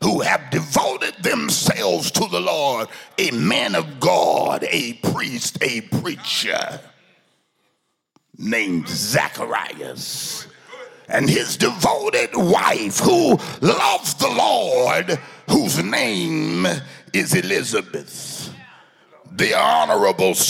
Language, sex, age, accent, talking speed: English, male, 50-69, American, 90 wpm